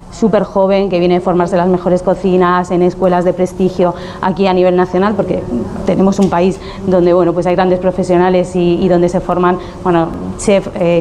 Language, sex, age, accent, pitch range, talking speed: Spanish, female, 20-39, Spanish, 180-195 Hz, 190 wpm